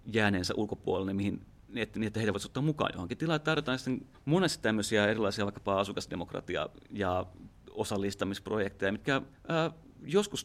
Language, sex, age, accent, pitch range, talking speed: Finnish, male, 30-49, native, 100-125 Hz, 125 wpm